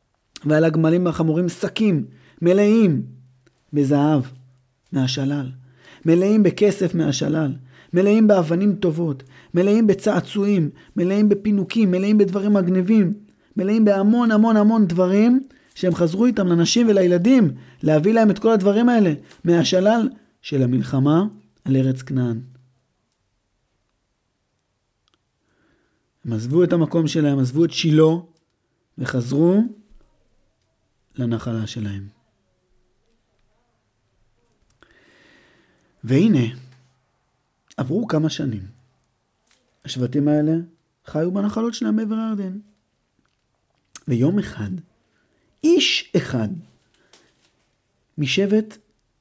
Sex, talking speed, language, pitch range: male, 85 wpm, Hebrew, 130-200 Hz